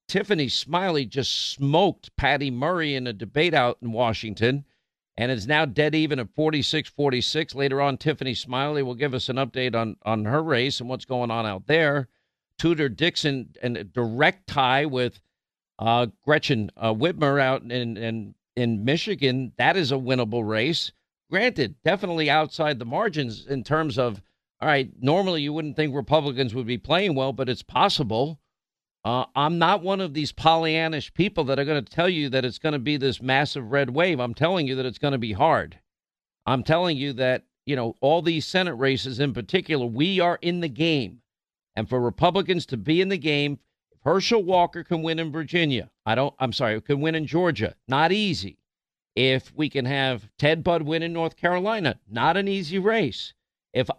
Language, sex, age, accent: English, male, 50-69, American